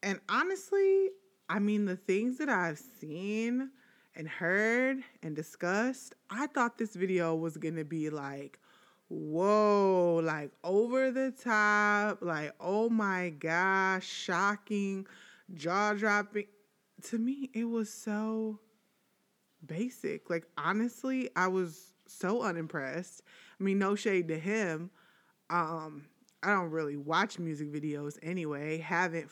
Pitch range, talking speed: 165-225 Hz, 125 wpm